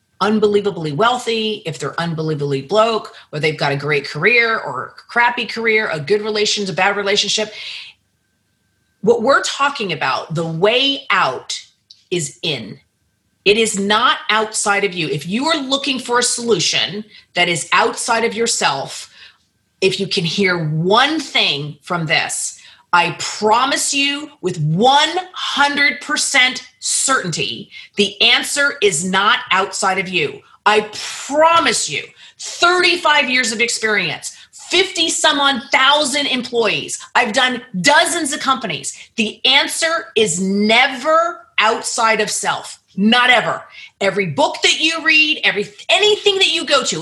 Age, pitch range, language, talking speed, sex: 30-49, 190-280 Hz, English, 135 wpm, female